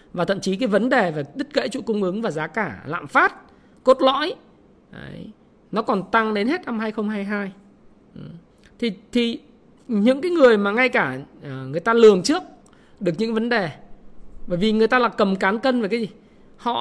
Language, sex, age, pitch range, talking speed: Vietnamese, male, 20-39, 210-260 Hz, 200 wpm